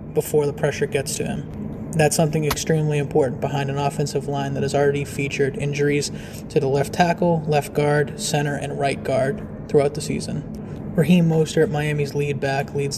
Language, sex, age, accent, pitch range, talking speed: English, male, 20-39, American, 140-155 Hz, 175 wpm